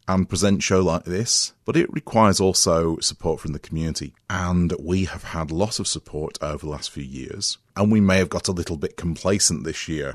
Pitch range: 80-100 Hz